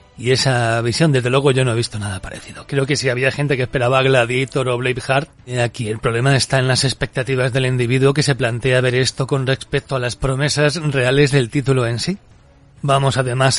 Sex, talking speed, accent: male, 210 wpm, Spanish